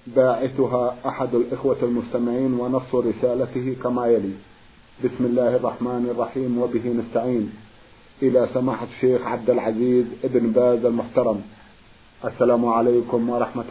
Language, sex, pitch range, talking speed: Arabic, male, 120-130 Hz, 110 wpm